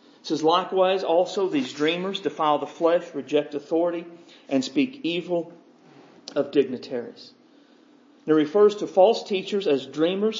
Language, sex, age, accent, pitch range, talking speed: English, male, 40-59, American, 185-280 Hz, 135 wpm